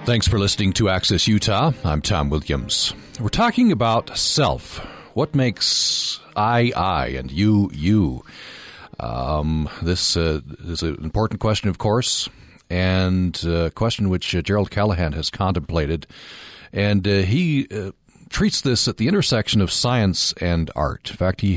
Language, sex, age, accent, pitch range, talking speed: English, male, 40-59, American, 85-115 Hz, 150 wpm